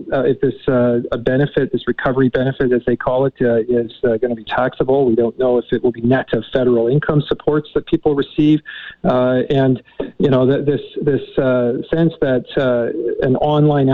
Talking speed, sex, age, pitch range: 205 wpm, male, 40-59, 120-140 Hz